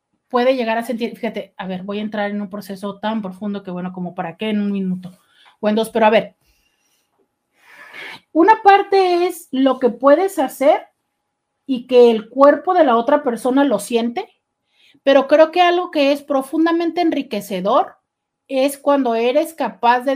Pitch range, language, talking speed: 215-285 Hz, Spanish, 175 wpm